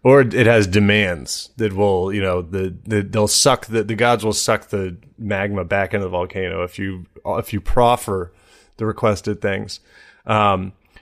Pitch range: 100-130 Hz